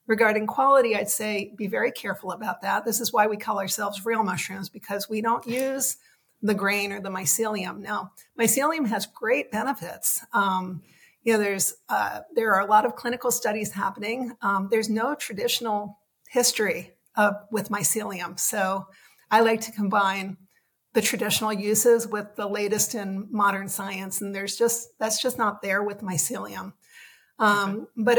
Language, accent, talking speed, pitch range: English, American, 165 wpm, 205-235 Hz